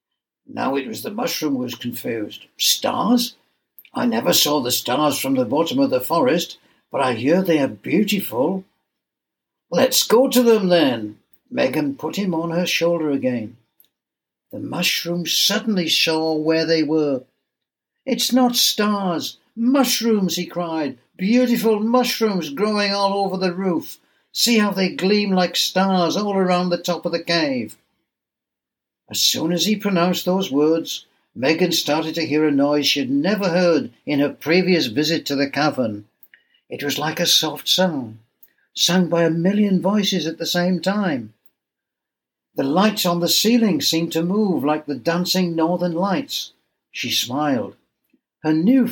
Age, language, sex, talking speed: 60-79, English, male, 155 wpm